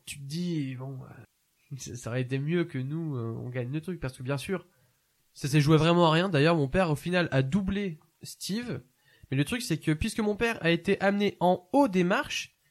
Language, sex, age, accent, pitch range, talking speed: French, male, 20-39, French, 140-190 Hz, 230 wpm